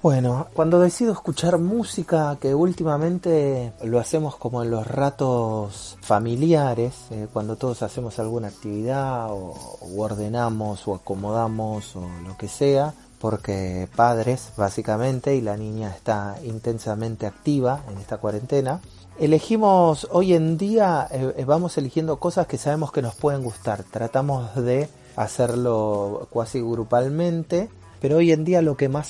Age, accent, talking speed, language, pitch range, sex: 30-49, Argentinian, 140 wpm, Spanish, 110-145 Hz, male